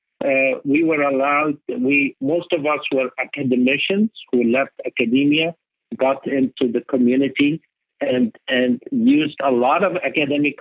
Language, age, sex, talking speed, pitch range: English, 50-69, male, 135 wpm, 125-150 Hz